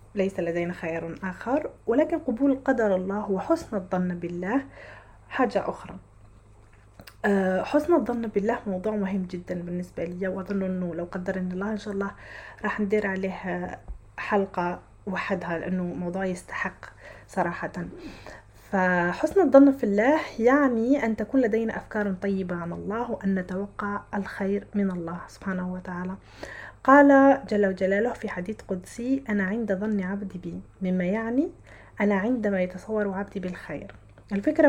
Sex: female